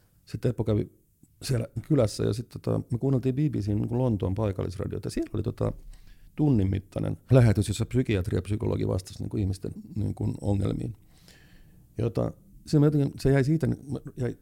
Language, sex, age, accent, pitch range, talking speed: Finnish, male, 50-69, native, 100-125 Hz, 135 wpm